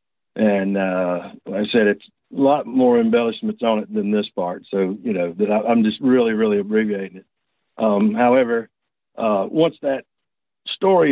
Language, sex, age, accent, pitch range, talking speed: English, male, 50-69, American, 110-175 Hz, 165 wpm